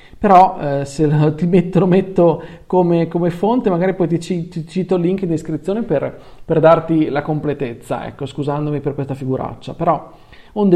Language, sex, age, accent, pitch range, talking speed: Italian, male, 40-59, native, 150-190 Hz, 160 wpm